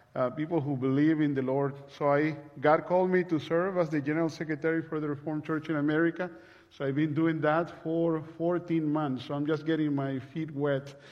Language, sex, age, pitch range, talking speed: English, male, 40-59, 140-165 Hz, 210 wpm